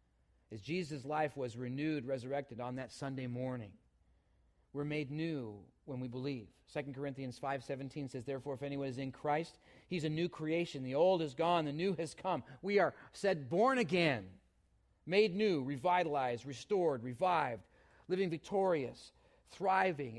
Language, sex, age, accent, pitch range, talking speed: English, male, 40-59, American, 125-175 Hz, 150 wpm